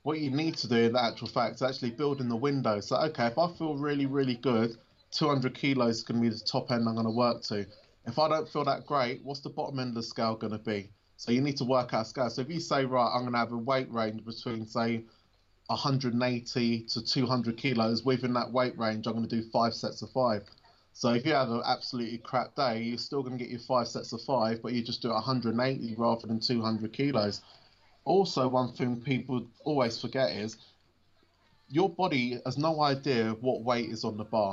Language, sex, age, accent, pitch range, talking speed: English, male, 20-39, British, 115-130 Hz, 235 wpm